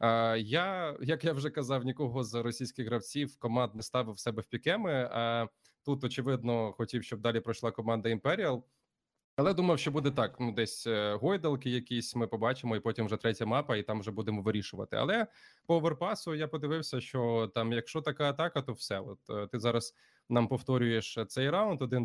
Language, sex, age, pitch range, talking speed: Ukrainian, male, 20-39, 110-135 Hz, 175 wpm